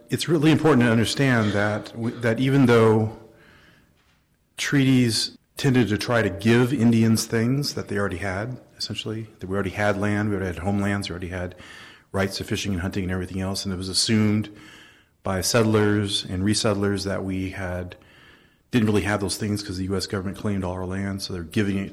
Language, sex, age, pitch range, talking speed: English, male, 40-59, 95-115 Hz, 195 wpm